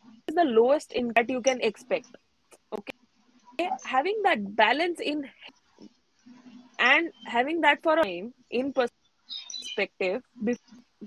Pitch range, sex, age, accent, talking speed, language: 225-275 Hz, female, 20-39, Indian, 120 wpm, English